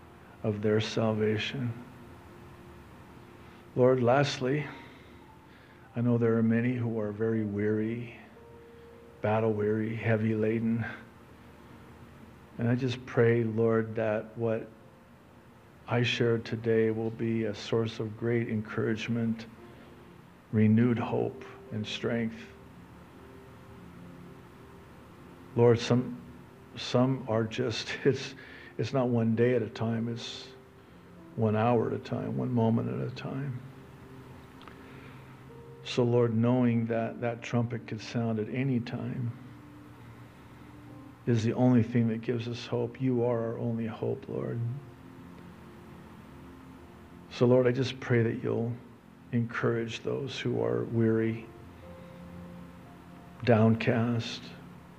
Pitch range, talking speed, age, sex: 110-120 Hz, 110 wpm, 50-69, male